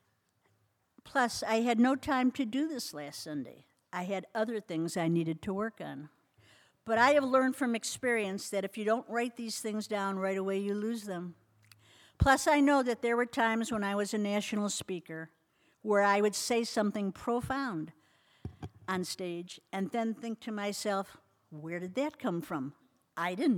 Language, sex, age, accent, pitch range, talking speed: English, female, 60-79, American, 155-210 Hz, 180 wpm